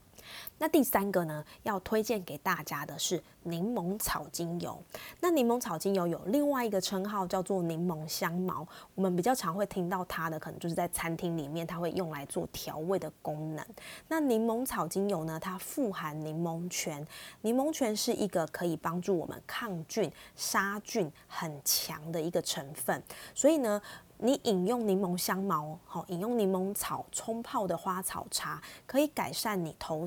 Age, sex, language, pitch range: 20-39, female, Chinese, 165-215 Hz